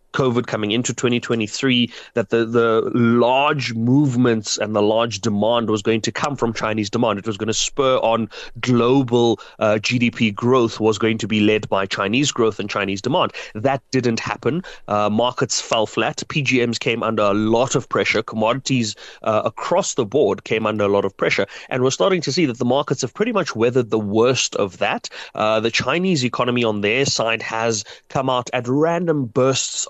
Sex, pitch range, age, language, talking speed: male, 110-130 Hz, 30-49, English, 190 wpm